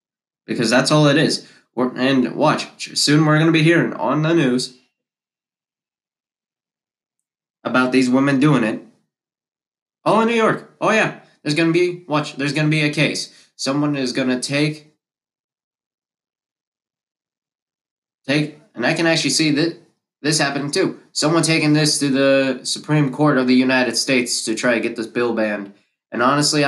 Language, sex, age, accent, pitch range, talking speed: English, male, 20-39, American, 125-150 Hz, 160 wpm